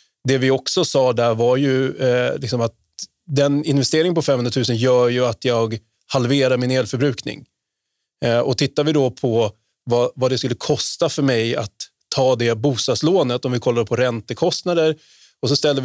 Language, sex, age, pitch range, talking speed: Swedish, male, 20-39, 120-145 Hz, 180 wpm